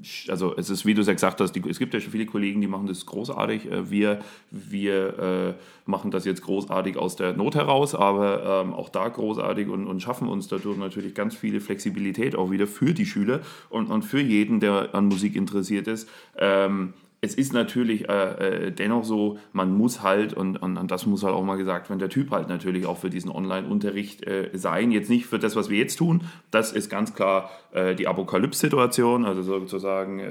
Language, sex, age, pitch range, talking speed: German, male, 30-49, 95-115 Hz, 210 wpm